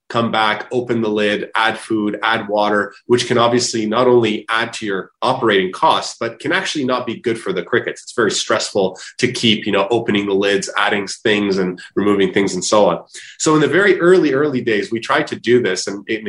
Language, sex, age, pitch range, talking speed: English, male, 30-49, 100-120 Hz, 220 wpm